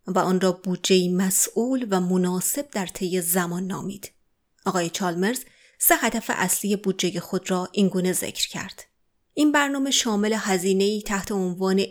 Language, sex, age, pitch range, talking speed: Persian, female, 30-49, 185-225 Hz, 140 wpm